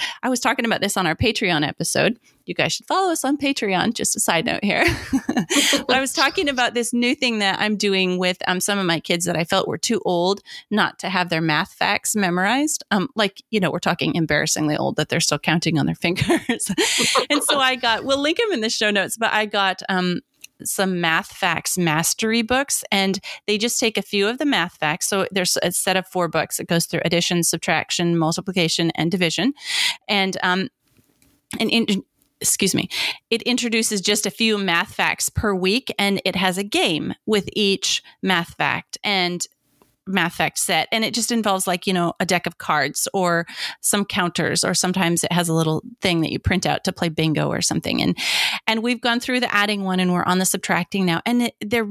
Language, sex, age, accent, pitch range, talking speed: English, female, 30-49, American, 175-235 Hz, 210 wpm